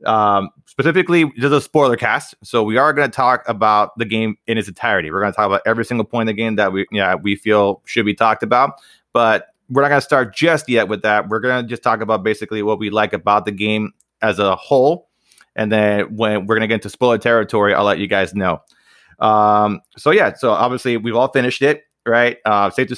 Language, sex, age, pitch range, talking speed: English, male, 20-39, 105-120 Hz, 240 wpm